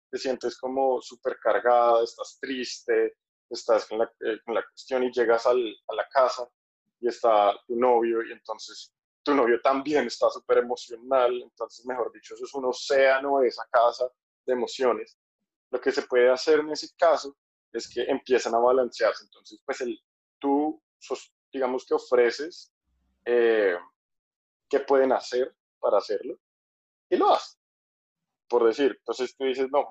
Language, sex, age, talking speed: Spanish, male, 20-39, 160 wpm